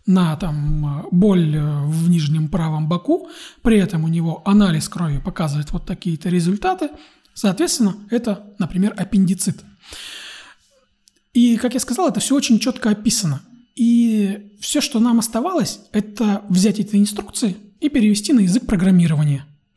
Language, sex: Russian, male